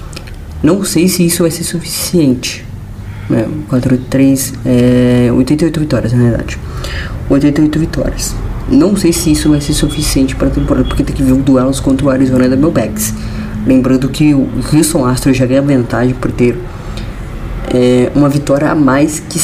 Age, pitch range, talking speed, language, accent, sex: 20-39, 115-145 Hz, 175 wpm, Portuguese, Brazilian, female